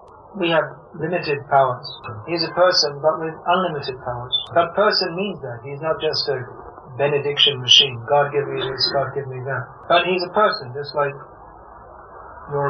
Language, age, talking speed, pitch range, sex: English, 30-49, 175 wpm, 135-165 Hz, male